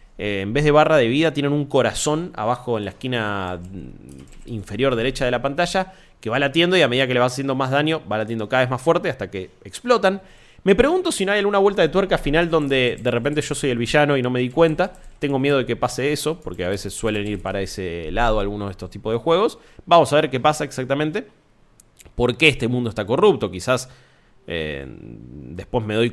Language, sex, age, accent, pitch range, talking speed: Spanish, male, 20-39, Argentinian, 115-170 Hz, 225 wpm